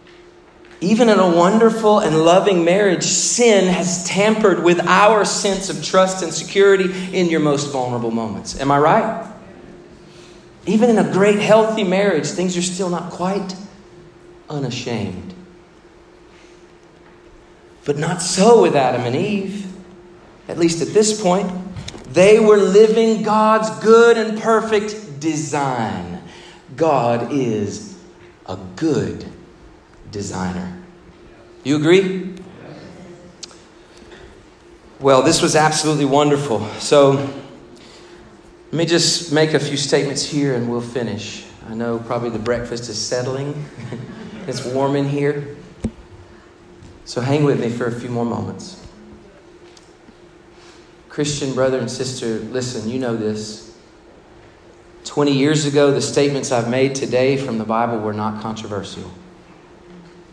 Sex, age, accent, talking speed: male, 40-59, American, 120 wpm